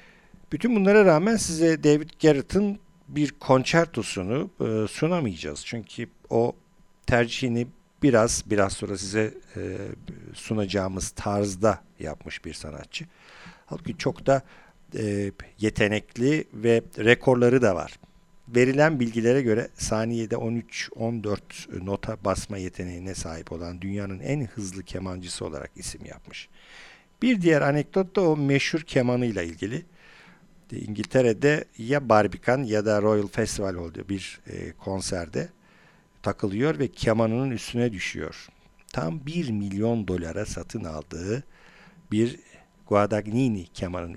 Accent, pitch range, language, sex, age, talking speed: native, 95-130 Hz, Turkish, male, 50-69, 110 wpm